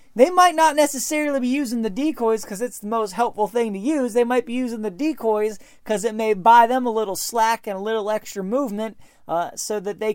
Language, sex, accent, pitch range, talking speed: English, male, American, 190-250 Hz, 230 wpm